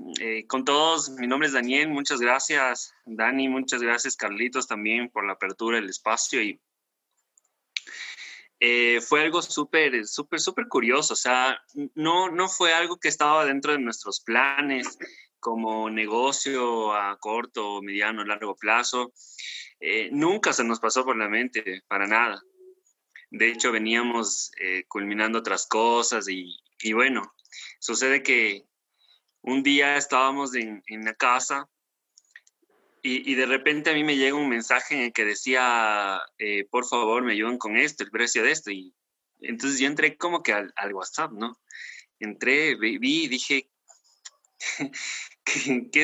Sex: male